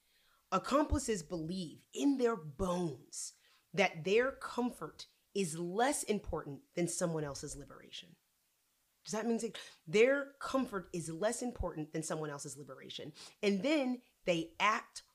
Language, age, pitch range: English, 30-49, 165-210 Hz